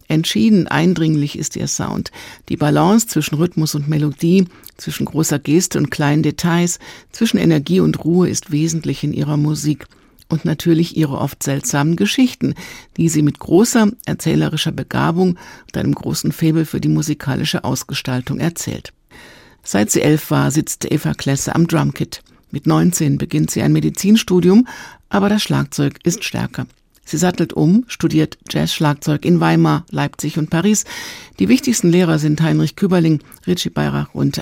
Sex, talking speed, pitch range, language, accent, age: female, 150 wpm, 150-180 Hz, German, German, 60-79